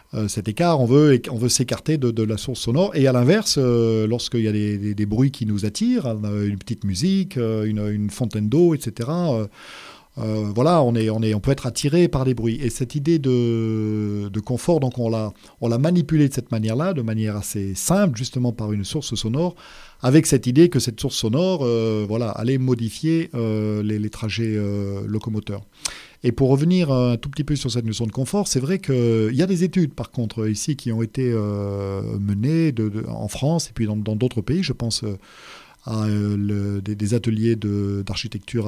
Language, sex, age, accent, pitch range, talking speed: French, male, 40-59, French, 110-140 Hz, 215 wpm